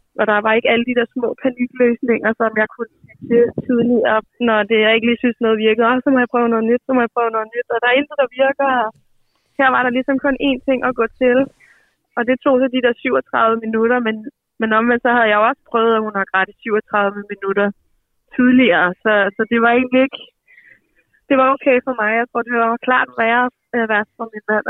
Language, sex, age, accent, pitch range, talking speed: Danish, female, 20-39, native, 220-255 Hz, 235 wpm